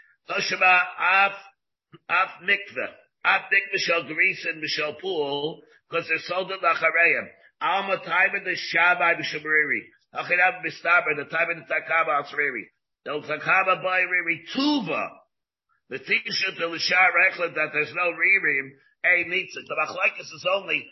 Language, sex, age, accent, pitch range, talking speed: English, male, 50-69, American, 160-185 Hz, 65 wpm